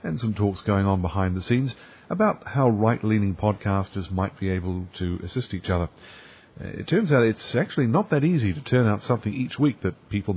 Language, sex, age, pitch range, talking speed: English, male, 50-69, 95-125 Hz, 205 wpm